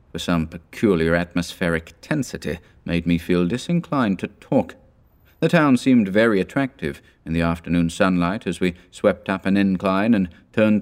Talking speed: 150 wpm